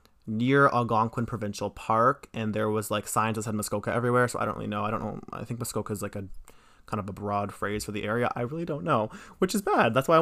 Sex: male